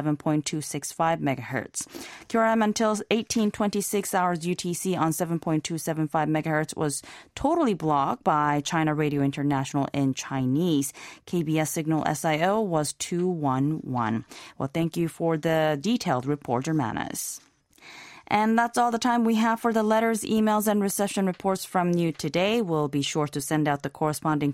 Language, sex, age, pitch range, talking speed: English, female, 30-49, 150-195 Hz, 140 wpm